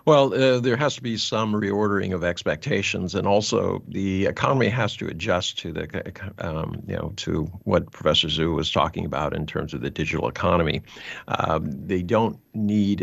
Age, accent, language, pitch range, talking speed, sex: 50-69, American, English, 80-100 Hz, 180 wpm, male